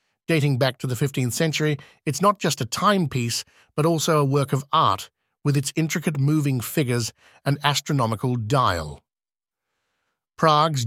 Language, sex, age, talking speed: English, male, 50-69, 145 wpm